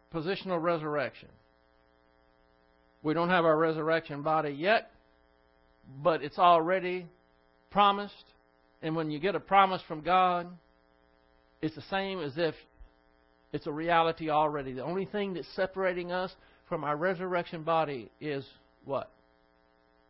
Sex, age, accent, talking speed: male, 60-79, American, 125 wpm